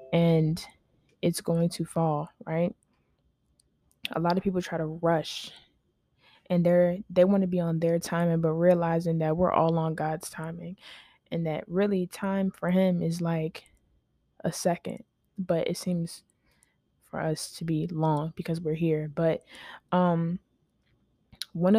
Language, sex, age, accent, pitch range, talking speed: English, female, 20-39, American, 165-180 Hz, 150 wpm